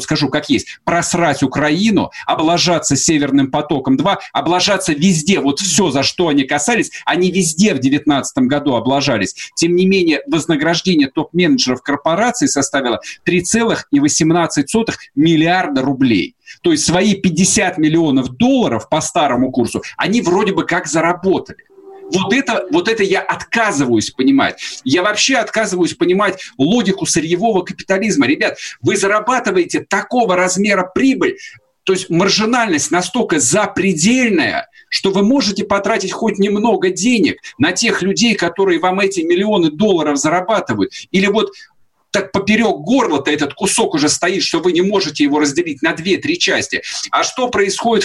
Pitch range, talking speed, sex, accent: 155-230 Hz, 135 wpm, male, native